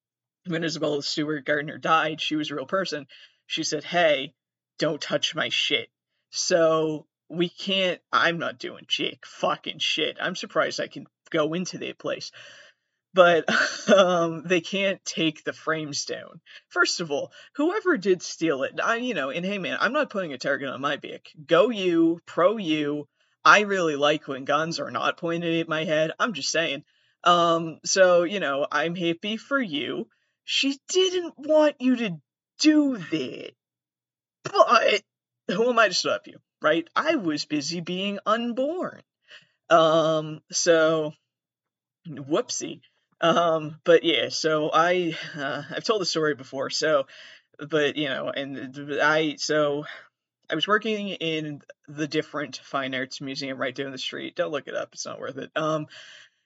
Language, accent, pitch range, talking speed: English, American, 150-200 Hz, 165 wpm